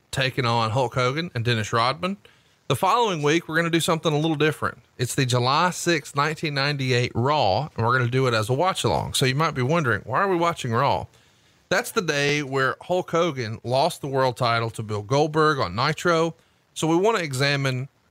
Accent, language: American, English